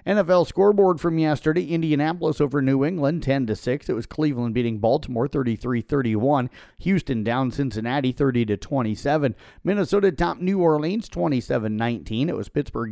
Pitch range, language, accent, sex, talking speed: 115-150 Hz, English, American, male, 125 wpm